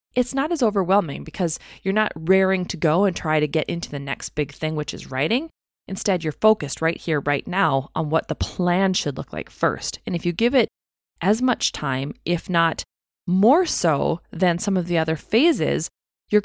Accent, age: American, 20-39